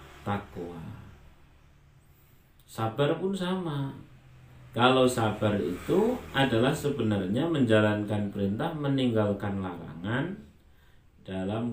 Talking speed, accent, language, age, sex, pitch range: 70 wpm, native, Indonesian, 40-59, male, 105-145 Hz